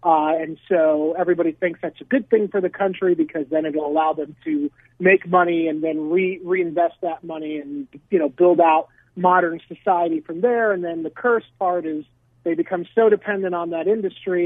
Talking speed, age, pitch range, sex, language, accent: 205 wpm, 40-59, 160-210 Hz, male, English, American